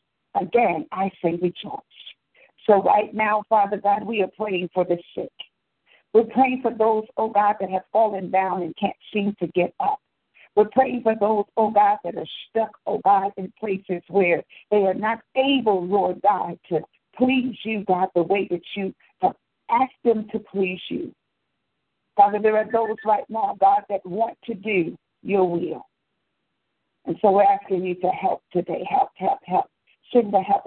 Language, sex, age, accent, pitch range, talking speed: English, female, 60-79, American, 175-215 Hz, 180 wpm